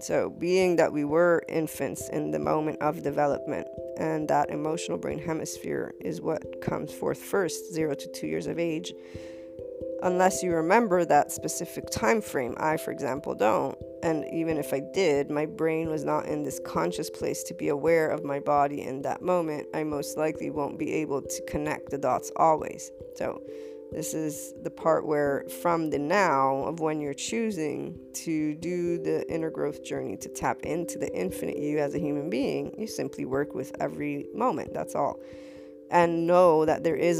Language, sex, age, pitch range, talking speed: English, female, 20-39, 130-165 Hz, 180 wpm